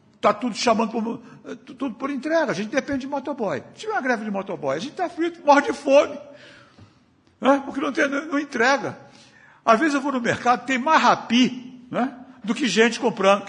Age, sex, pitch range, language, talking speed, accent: 60-79, male, 190-275 Hz, Portuguese, 195 wpm, Brazilian